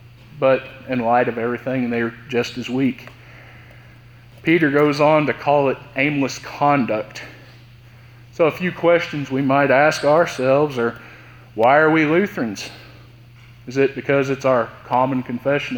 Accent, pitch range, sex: American, 120-145 Hz, male